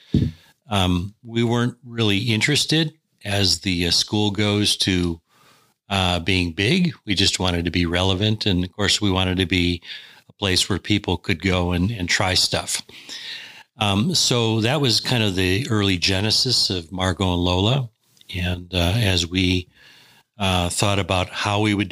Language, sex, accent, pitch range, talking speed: English, male, American, 90-110 Hz, 165 wpm